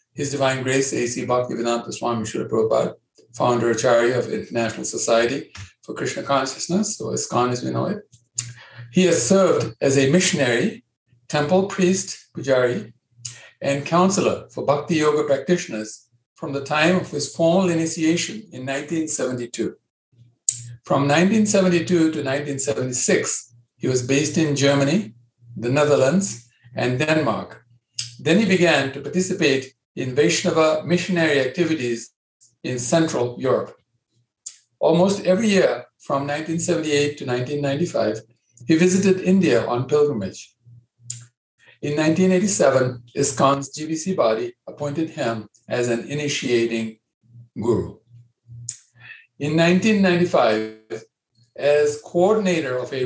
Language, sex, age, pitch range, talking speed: English, male, 60-79, 120-165 Hz, 115 wpm